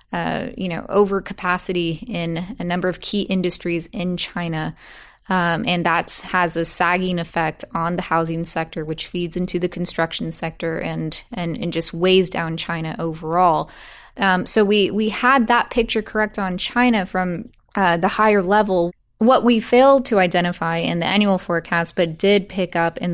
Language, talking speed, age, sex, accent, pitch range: English, 170 wpm, 20-39, female, American, 165-195 Hz